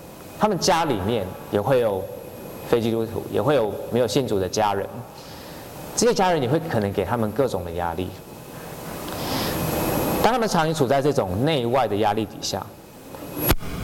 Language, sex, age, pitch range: Chinese, male, 30-49, 105-140 Hz